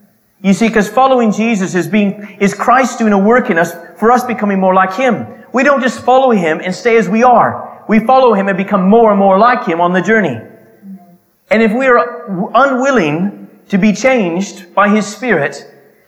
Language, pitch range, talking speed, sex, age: English, 195-245 Hz, 200 wpm, male, 30-49